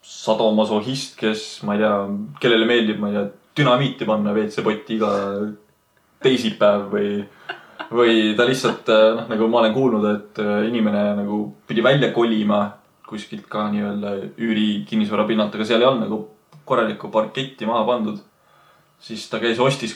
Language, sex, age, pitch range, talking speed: English, male, 20-39, 105-120 Hz, 145 wpm